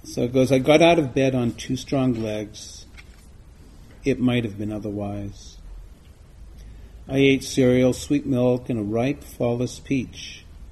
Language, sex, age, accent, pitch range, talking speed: English, male, 40-59, American, 80-125 Hz, 150 wpm